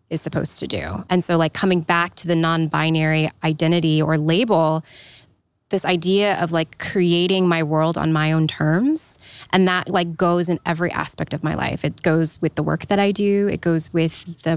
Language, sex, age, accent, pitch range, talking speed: English, female, 20-39, American, 155-185 Hz, 200 wpm